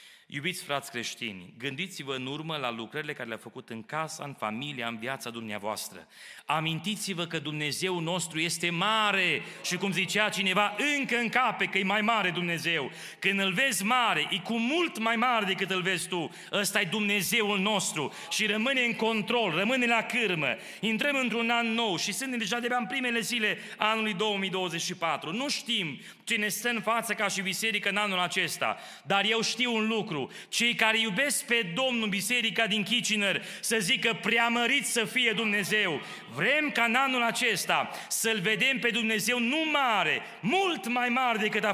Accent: native